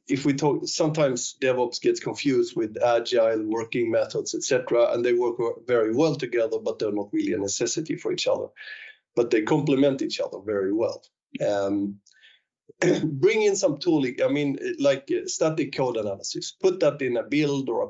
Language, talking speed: English, 175 wpm